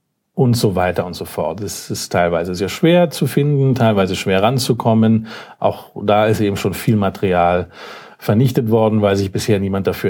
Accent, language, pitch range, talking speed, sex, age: German, German, 100-125 Hz, 180 wpm, male, 40-59